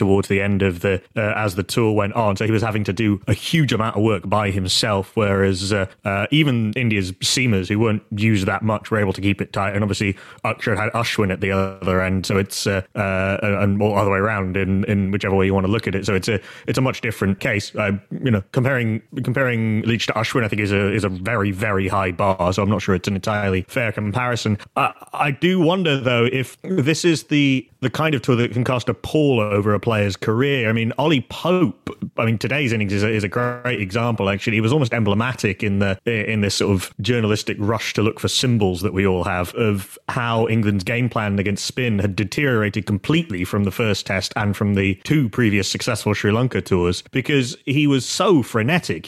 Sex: male